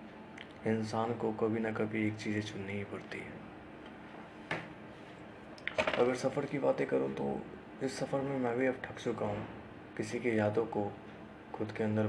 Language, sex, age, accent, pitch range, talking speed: Hindi, male, 20-39, native, 105-120 Hz, 165 wpm